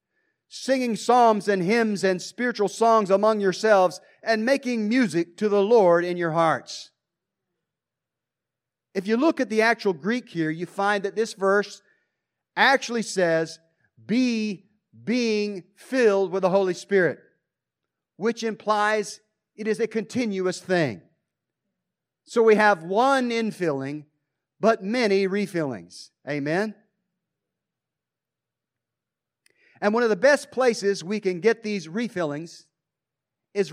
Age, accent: 50-69, American